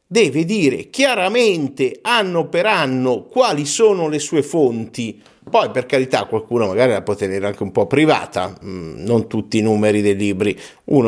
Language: Italian